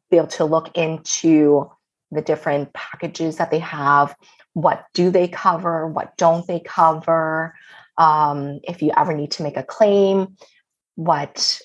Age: 30-49